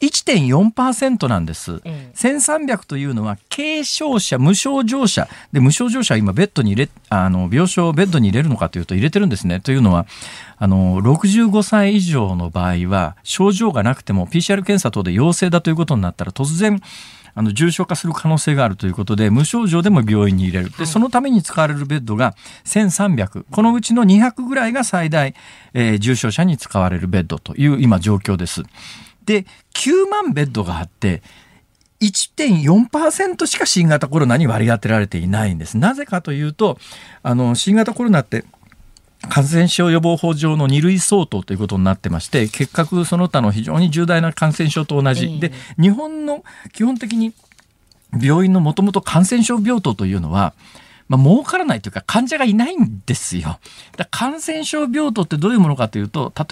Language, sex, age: Japanese, male, 40-59